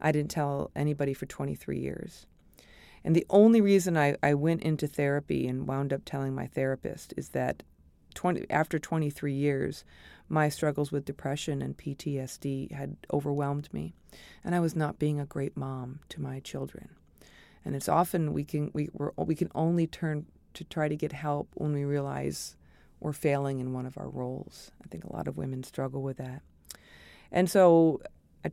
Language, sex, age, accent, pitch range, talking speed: English, female, 40-59, American, 130-160 Hz, 180 wpm